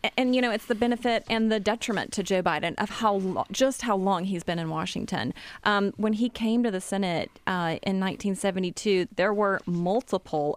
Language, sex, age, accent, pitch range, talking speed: English, female, 30-49, American, 175-205 Hz, 200 wpm